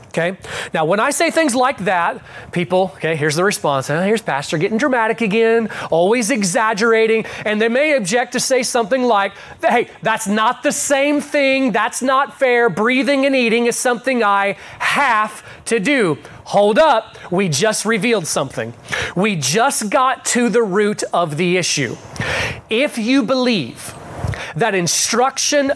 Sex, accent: male, American